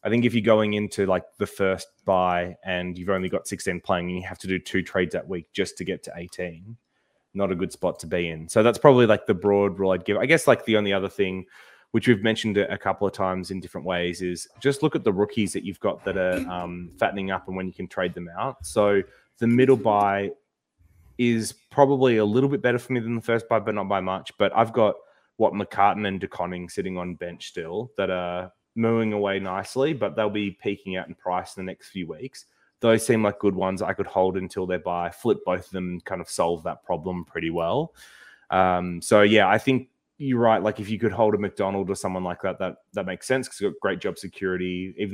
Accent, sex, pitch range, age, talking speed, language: Australian, male, 90-110 Hz, 20-39, 245 wpm, English